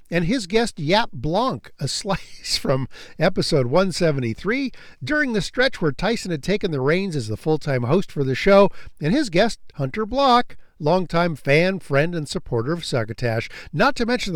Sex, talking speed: male, 190 wpm